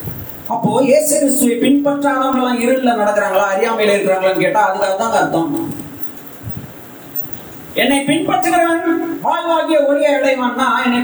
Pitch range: 280-330 Hz